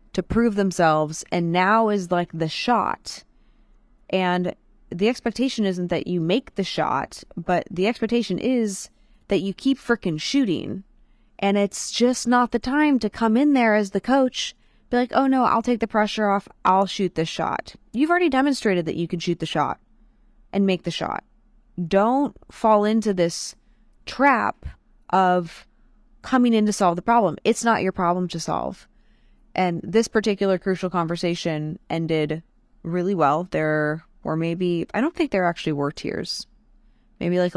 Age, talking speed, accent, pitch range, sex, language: 20-39, 165 wpm, American, 175-225 Hz, female, English